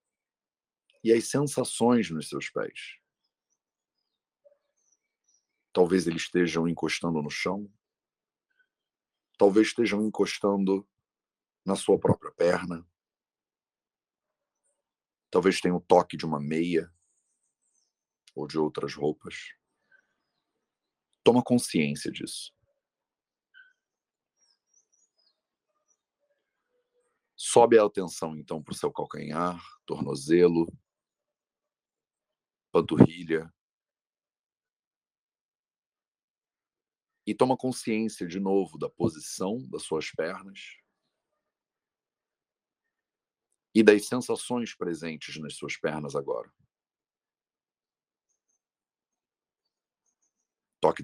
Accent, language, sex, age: Brazilian, English, male, 50-69